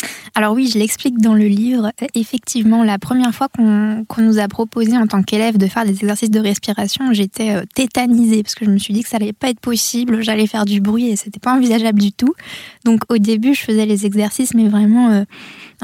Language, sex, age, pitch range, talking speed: French, female, 20-39, 210-235 Hz, 225 wpm